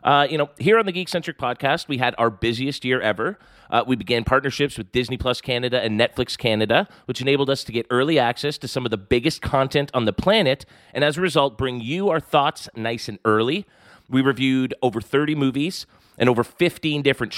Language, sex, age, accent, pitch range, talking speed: English, male, 30-49, American, 120-155 Hz, 215 wpm